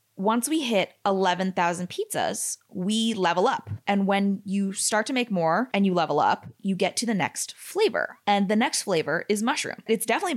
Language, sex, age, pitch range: English, female, 20-39, 180-230 Hz